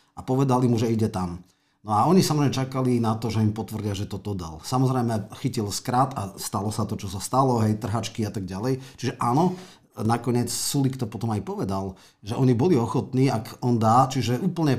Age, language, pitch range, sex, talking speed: 40-59, Slovak, 100-125 Hz, male, 205 wpm